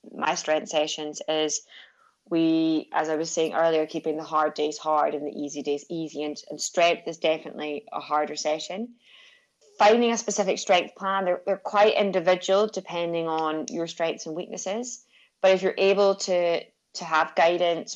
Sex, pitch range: female, 155-190 Hz